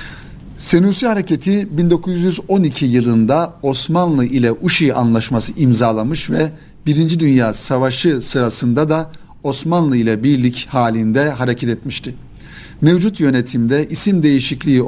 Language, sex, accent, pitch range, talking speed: Turkish, male, native, 120-155 Hz, 100 wpm